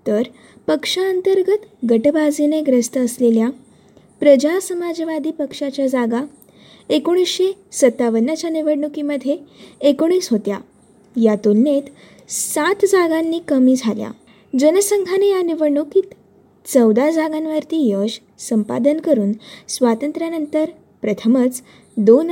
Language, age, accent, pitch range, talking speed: Marathi, 20-39, native, 235-315 Hz, 80 wpm